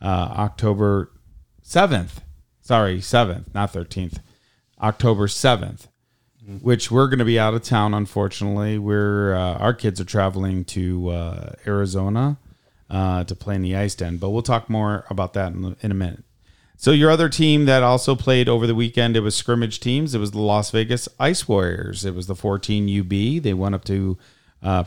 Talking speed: 185 wpm